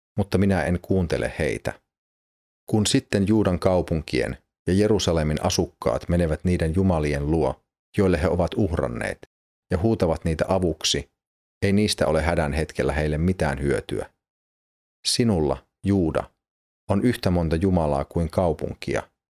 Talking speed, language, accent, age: 125 wpm, Finnish, native, 30-49